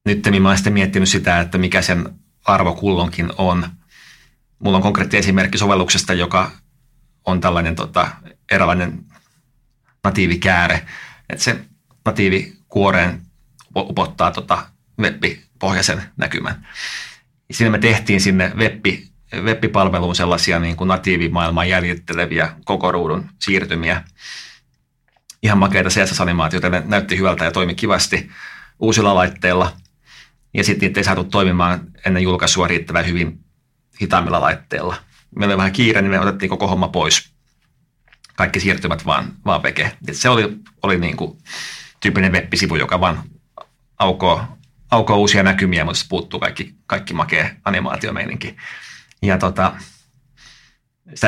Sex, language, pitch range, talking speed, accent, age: male, Finnish, 90-110 Hz, 115 wpm, native, 30-49